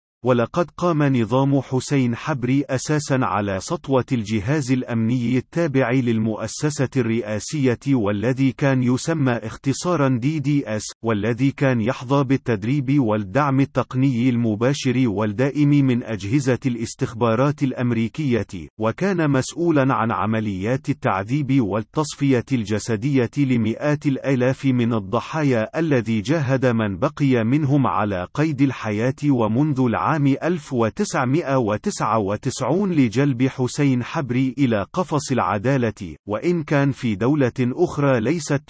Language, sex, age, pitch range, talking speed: Arabic, male, 40-59, 115-140 Hz, 100 wpm